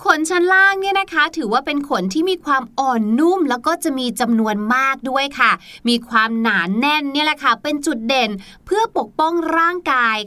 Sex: female